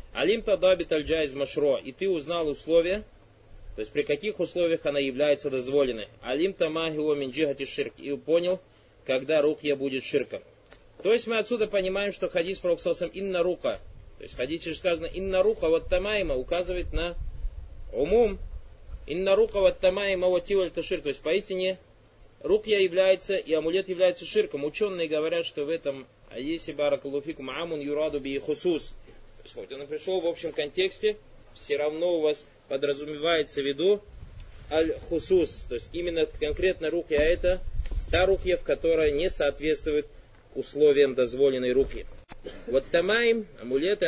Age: 20-39